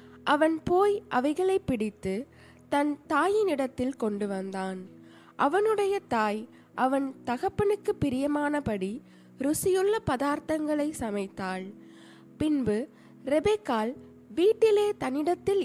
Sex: female